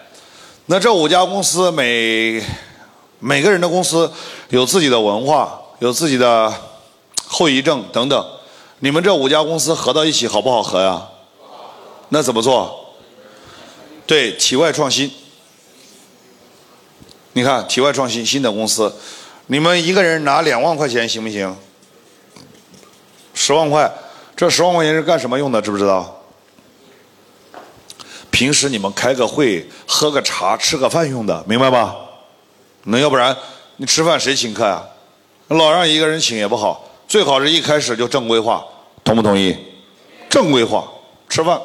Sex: male